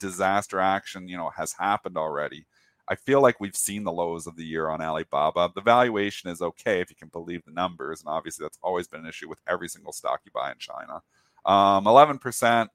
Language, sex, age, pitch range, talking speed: English, male, 40-59, 85-105 Hz, 220 wpm